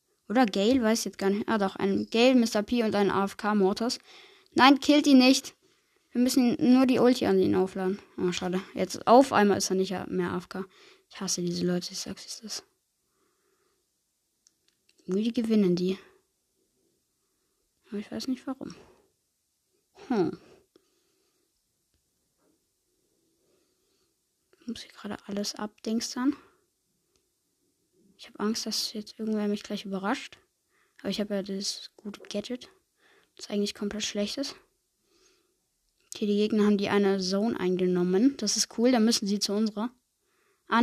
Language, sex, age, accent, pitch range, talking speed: German, female, 20-39, German, 205-330 Hz, 145 wpm